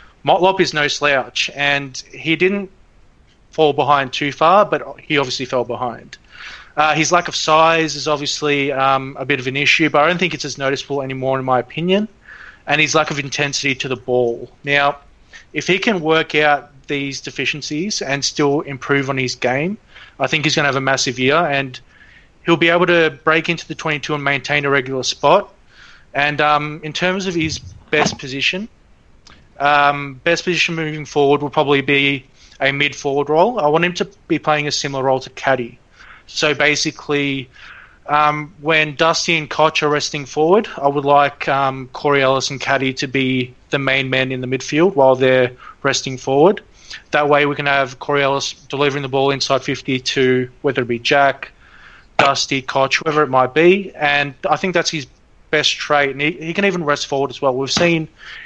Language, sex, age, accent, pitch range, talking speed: English, male, 30-49, Australian, 135-155 Hz, 190 wpm